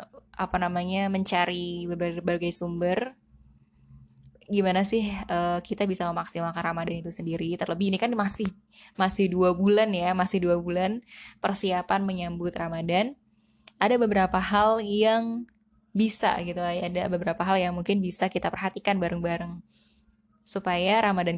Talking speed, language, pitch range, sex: 125 wpm, Indonesian, 175-215 Hz, female